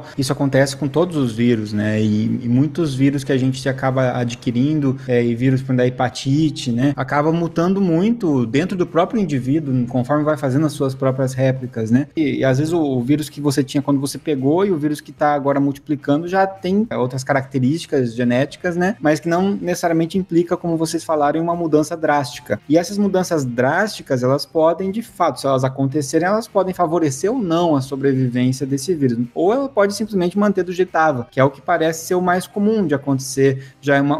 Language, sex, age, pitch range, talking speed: Portuguese, male, 20-39, 135-170 Hz, 200 wpm